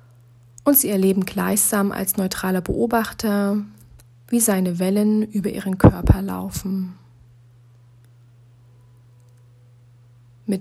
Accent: German